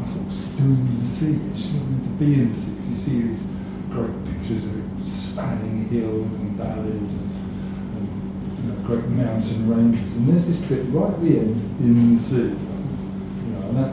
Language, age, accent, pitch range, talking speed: English, 50-69, British, 105-135 Hz, 210 wpm